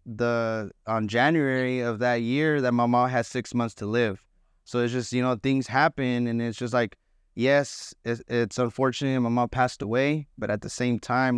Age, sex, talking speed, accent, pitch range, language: 20-39, male, 195 wpm, American, 110-125 Hz, English